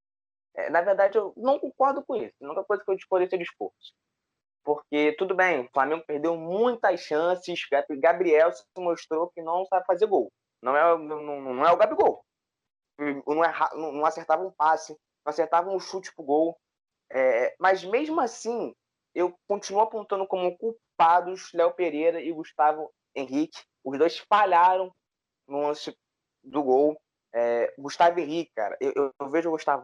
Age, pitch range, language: 20-39, 150-200 Hz, Portuguese